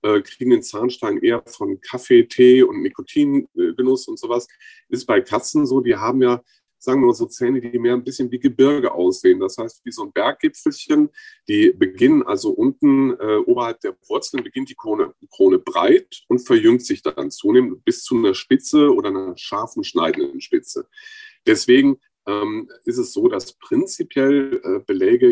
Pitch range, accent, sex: 300-370 Hz, German, male